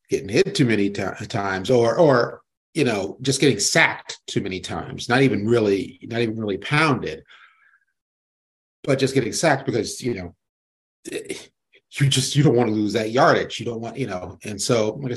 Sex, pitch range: male, 100-125 Hz